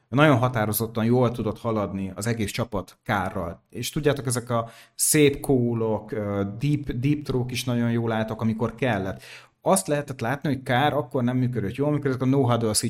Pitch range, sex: 110-135 Hz, male